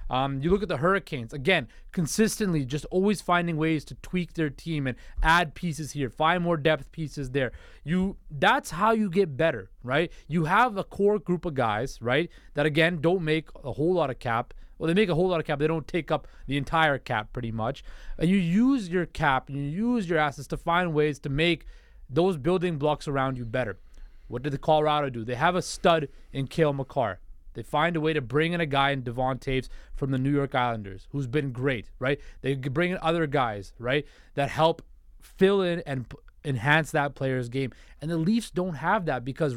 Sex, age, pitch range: male, 20-39, 130-170 Hz